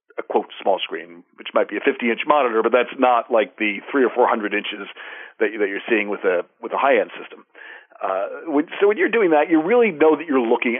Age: 50-69